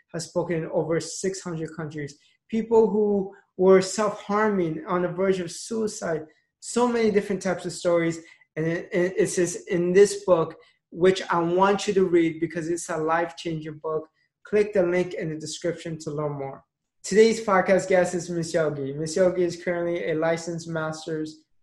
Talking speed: 170 wpm